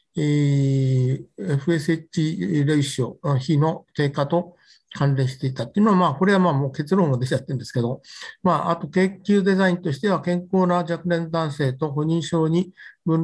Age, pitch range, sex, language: 60-79, 145-180 Hz, male, Japanese